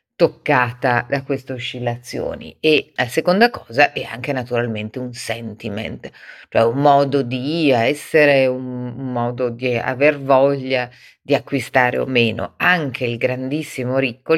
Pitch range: 120-145 Hz